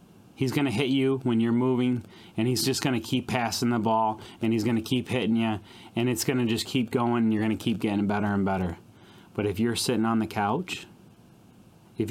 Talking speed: 240 wpm